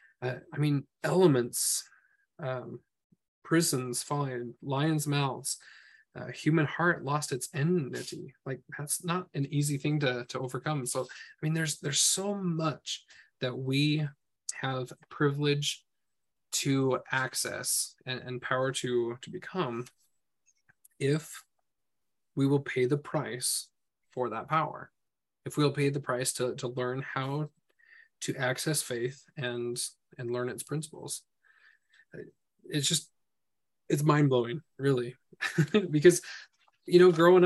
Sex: male